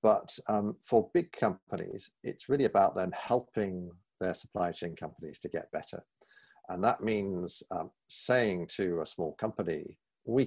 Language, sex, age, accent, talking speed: English, male, 50-69, British, 155 wpm